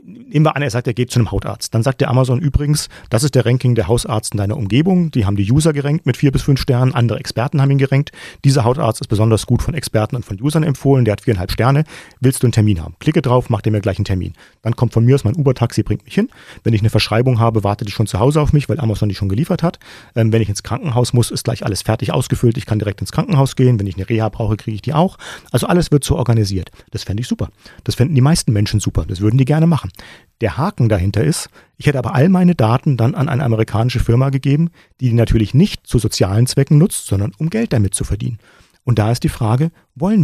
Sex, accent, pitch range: male, German, 110-140 Hz